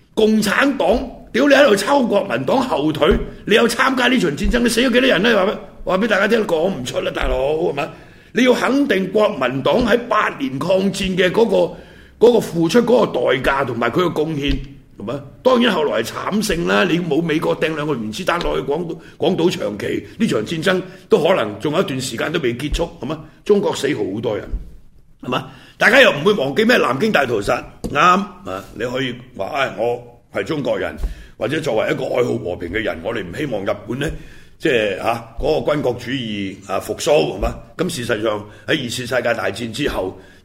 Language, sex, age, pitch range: Chinese, male, 60-79, 130-210 Hz